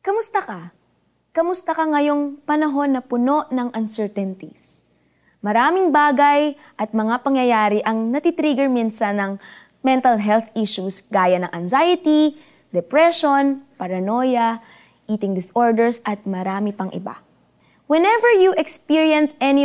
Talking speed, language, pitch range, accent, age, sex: 115 wpm, Filipino, 215-305 Hz, native, 20-39, female